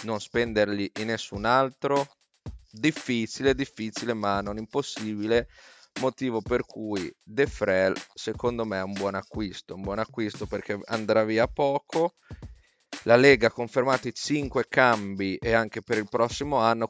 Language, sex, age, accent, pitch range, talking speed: Italian, male, 30-49, native, 105-125 Hz, 145 wpm